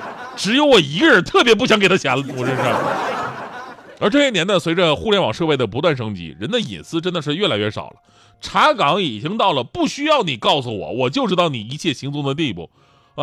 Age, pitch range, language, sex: 30-49, 130-185 Hz, Chinese, male